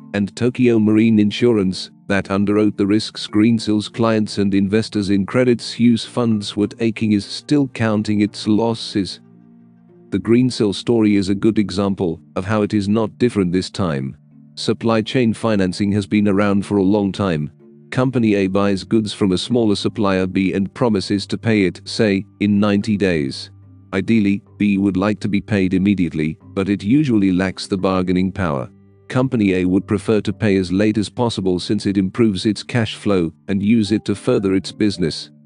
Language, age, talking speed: English, 40-59, 175 wpm